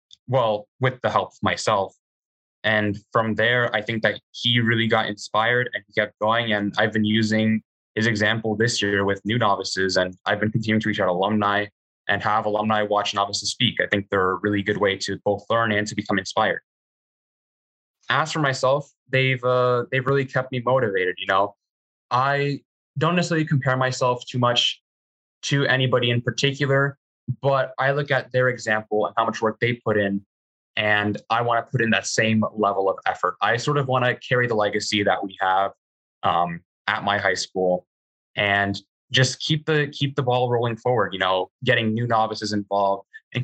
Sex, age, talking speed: male, 10-29, 190 wpm